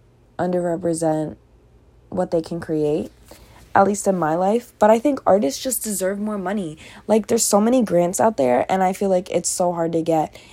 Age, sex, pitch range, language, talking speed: 20-39, female, 165-205 Hz, English, 195 wpm